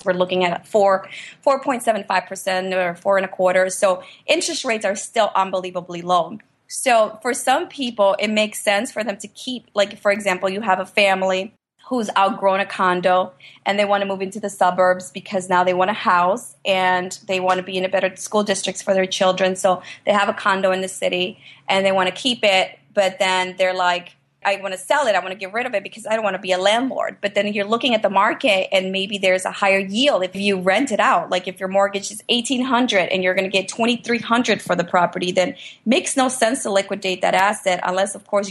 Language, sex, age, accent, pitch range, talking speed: English, female, 30-49, American, 185-220 Hz, 230 wpm